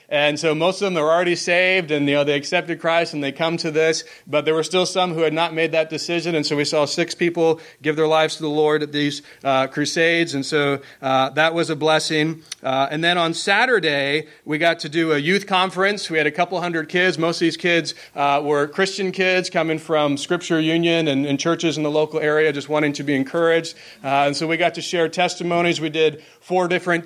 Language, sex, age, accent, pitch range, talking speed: English, male, 30-49, American, 145-170 Hz, 235 wpm